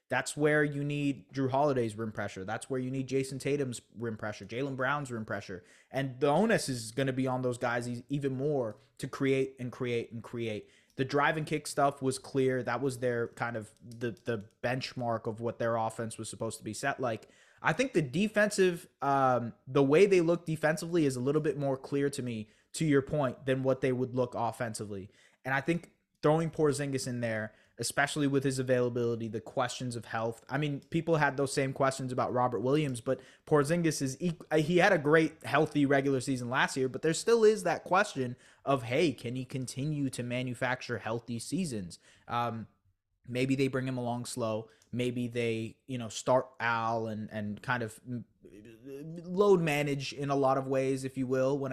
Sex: male